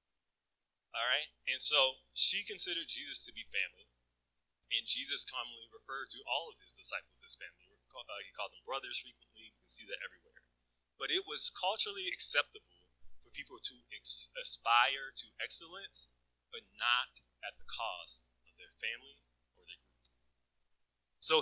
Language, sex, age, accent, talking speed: English, male, 30-49, American, 155 wpm